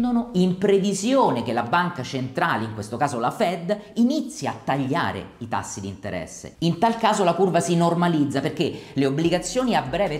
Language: Italian